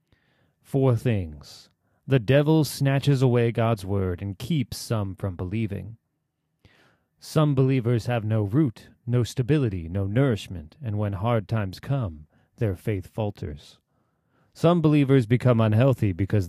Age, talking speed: 30-49, 125 wpm